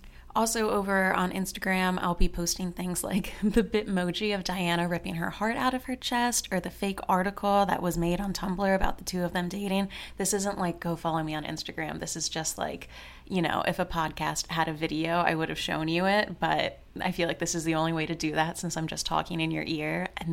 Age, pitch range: 20-39, 170-200 Hz